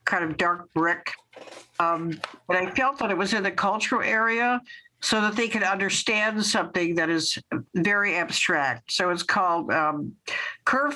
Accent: American